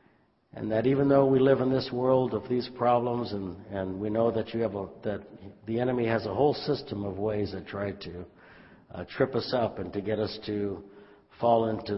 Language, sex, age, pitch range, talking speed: English, male, 60-79, 95-115 Hz, 200 wpm